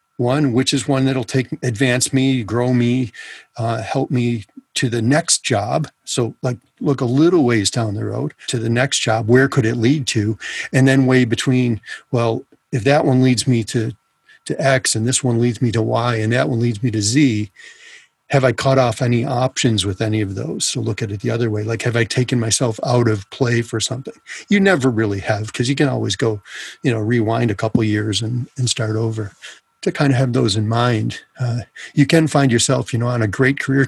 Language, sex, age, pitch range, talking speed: English, male, 40-59, 115-135 Hz, 225 wpm